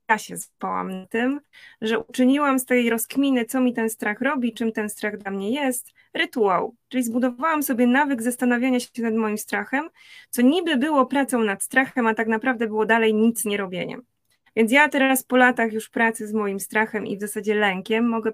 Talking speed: 190 wpm